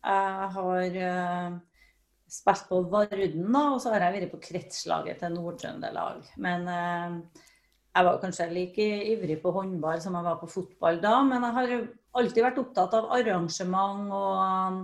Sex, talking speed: female, 150 wpm